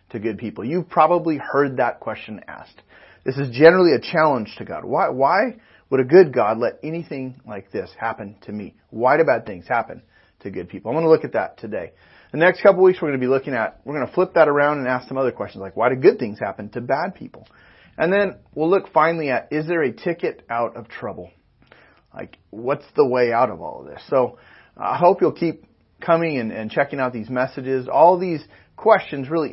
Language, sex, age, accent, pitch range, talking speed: English, male, 30-49, American, 120-170 Hz, 230 wpm